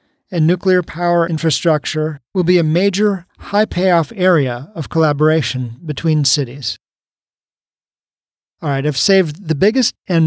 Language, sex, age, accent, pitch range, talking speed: English, male, 40-59, American, 155-195 Hz, 130 wpm